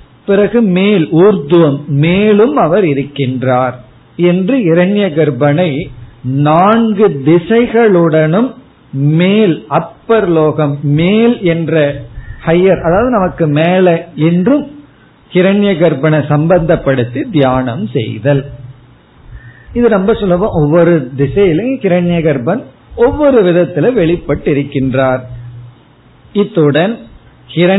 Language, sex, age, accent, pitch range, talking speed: Tamil, male, 50-69, native, 135-180 Hz, 80 wpm